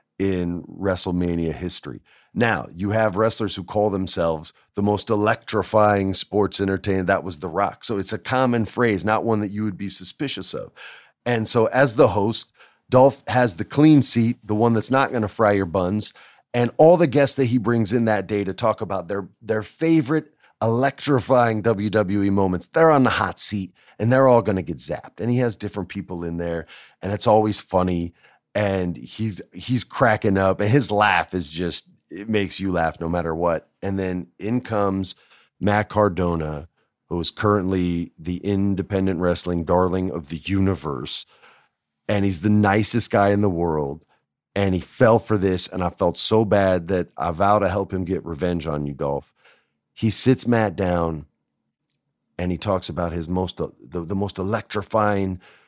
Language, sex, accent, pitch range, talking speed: English, male, American, 90-110 Hz, 180 wpm